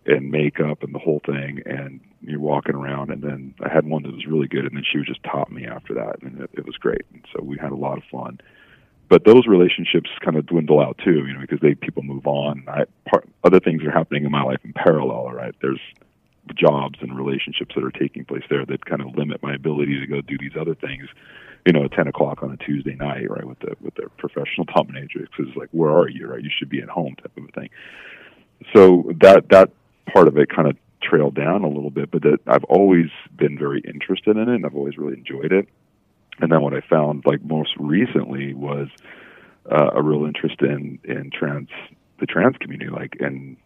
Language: English